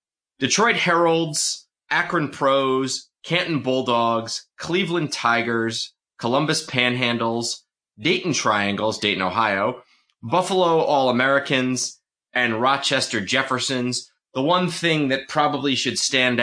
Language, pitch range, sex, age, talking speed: English, 105-135 Hz, male, 30-49, 95 wpm